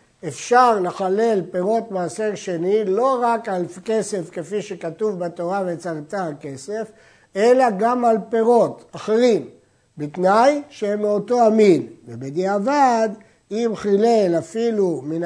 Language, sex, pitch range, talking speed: Hebrew, male, 165-225 Hz, 110 wpm